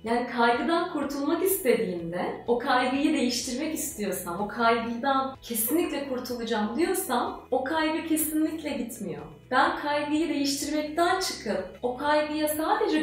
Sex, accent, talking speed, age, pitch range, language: female, native, 110 wpm, 30-49, 235-325 Hz, Turkish